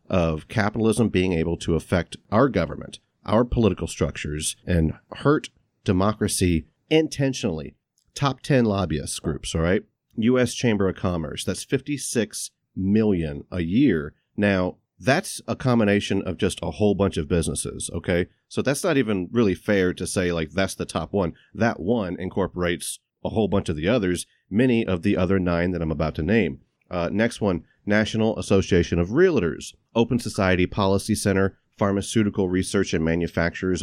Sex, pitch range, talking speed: male, 85-110 Hz, 160 wpm